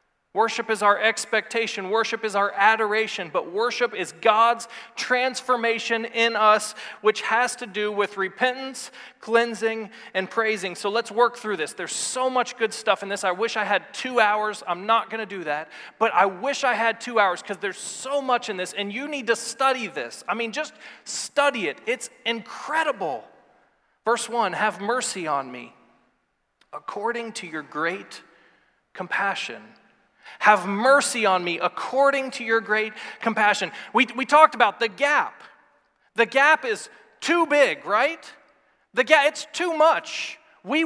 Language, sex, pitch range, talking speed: English, male, 215-280 Hz, 165 wpm